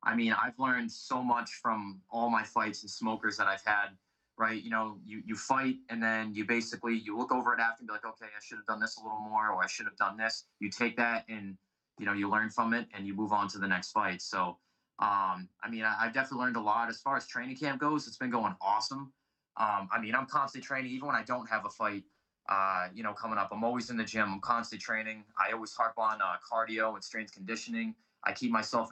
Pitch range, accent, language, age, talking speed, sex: 105-120 Hz, American, English, 20-39, 255 wpm, male